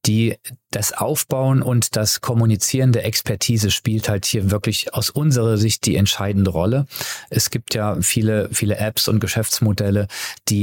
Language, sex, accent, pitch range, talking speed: German, male, German, 105-120 Hz, 150 wpm